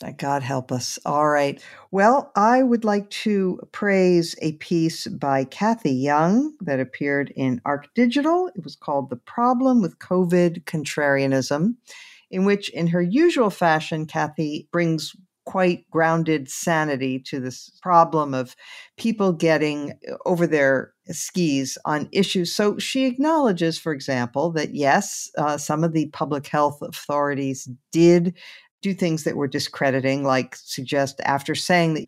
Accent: American